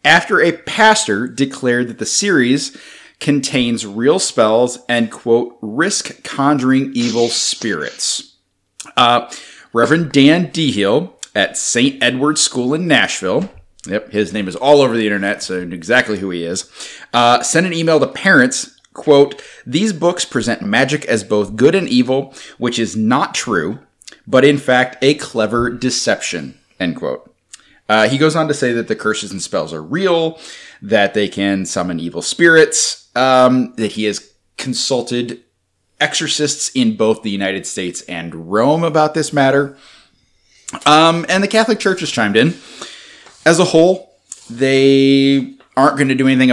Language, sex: English, male